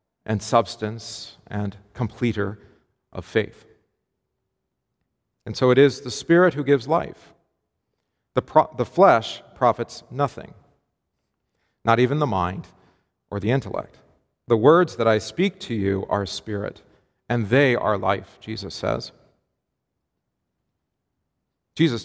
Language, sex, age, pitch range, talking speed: English, male, 40-59, 110-155 Hz, 120 wpm